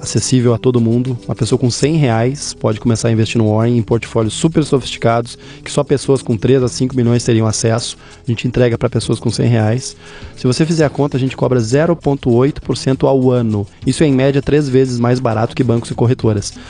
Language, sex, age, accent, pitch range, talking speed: Portuguese, male, 20-39, Brazilian, 115-140 Hz, 215 wpm